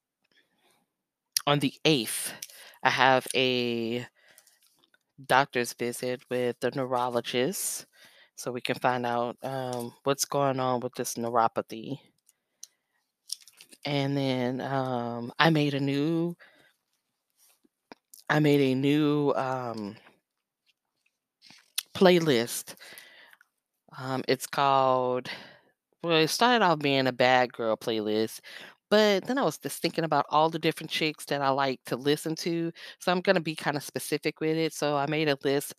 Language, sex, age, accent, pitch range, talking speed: English, female, 10-29, American, 130-150 Hz, 135 wpm